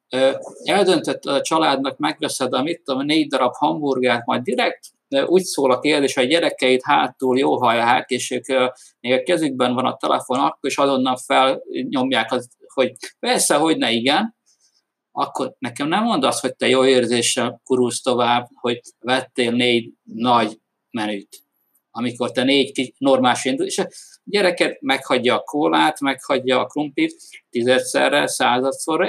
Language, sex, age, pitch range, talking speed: Hungarian, male, 50-69, 120-140 Hz, 145 wpm